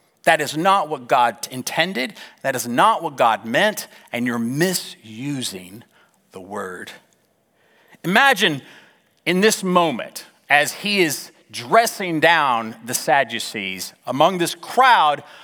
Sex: male